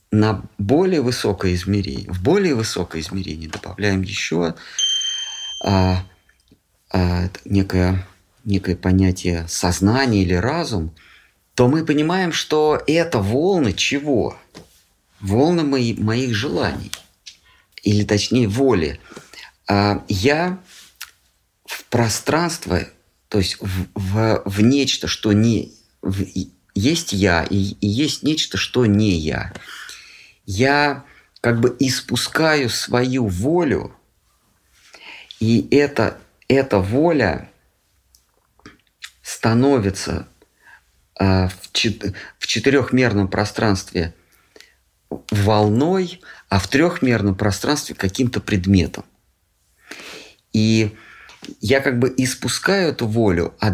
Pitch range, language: 95-130 Hz, Russian